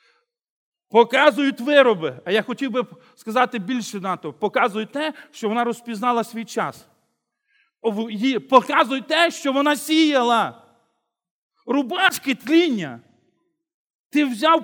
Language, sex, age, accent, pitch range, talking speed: Russian, male, 40-59, native, 215-280 Hz, 105 wpm